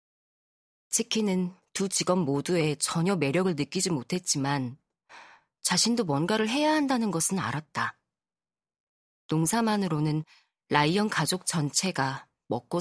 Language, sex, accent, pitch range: Korean, female, native, 150-210 Hz